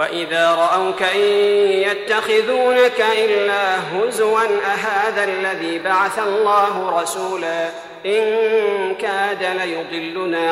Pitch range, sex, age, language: 185-225 Hz, male, 40-59, Arabic